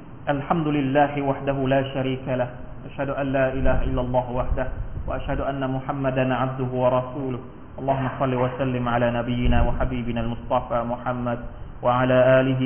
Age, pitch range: 40-59, 115-140 Hz